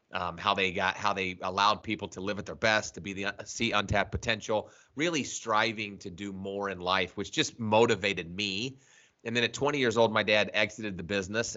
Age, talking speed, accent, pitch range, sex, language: 30-49, 215 wpm, American, 95-115 Hz, male, English